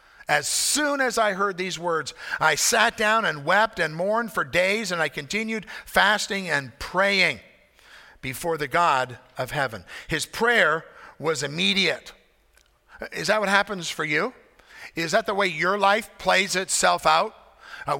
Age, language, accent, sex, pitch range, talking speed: 50-69, English, American, male, 155-215 Hz, 155 wpm